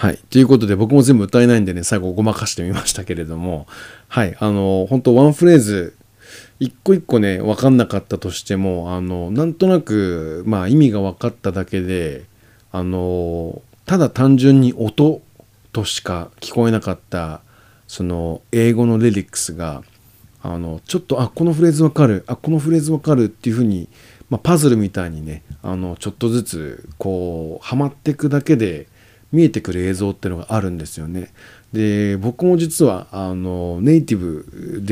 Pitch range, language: 90-125 Hz, Japanese